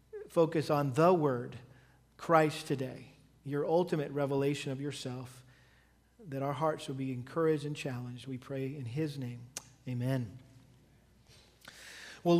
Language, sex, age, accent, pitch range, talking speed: English, male, 40-59, American, 150-205 Hz, 125 wpm